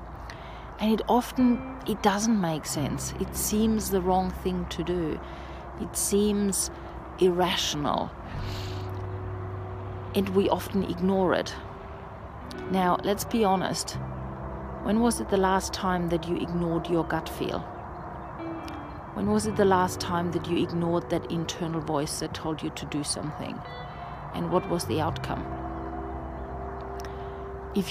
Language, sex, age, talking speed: English, female, 40-59, 135 wpm